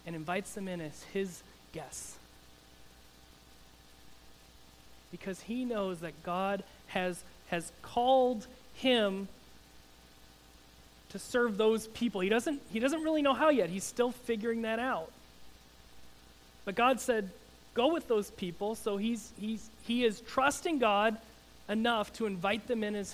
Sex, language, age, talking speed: male, English, 30-49, 135 wpm